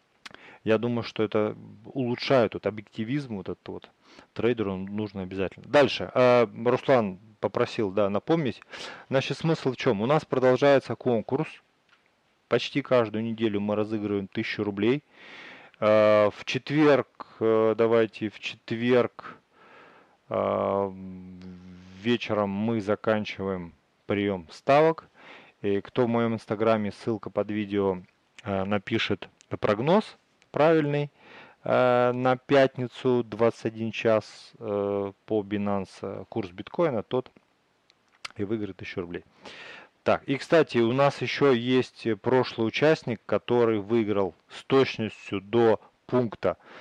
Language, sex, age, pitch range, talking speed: Russian, male, 30-49, 100-125 Hz, 110 wpm